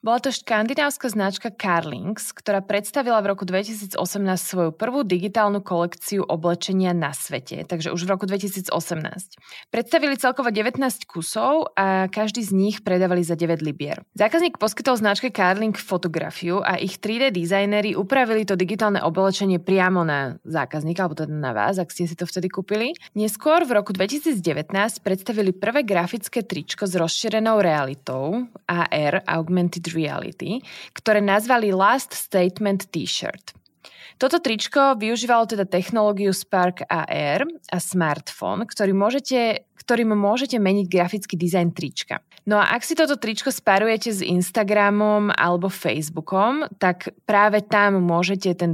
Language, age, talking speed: Slovak, 20-39, 140 wpm